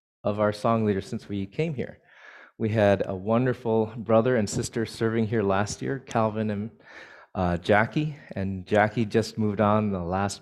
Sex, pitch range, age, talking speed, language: male, 95-110 Hz, 30-49, 175 wpm, English